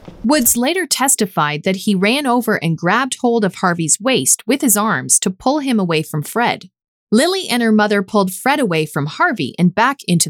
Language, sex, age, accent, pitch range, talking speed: English, female, 30-49, American, 175-245 Hz, 200 wpm